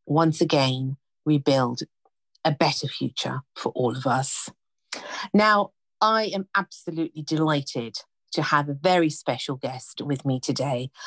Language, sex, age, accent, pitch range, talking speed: English, female, 50-69, British, 135-175 Hz, 135 wpm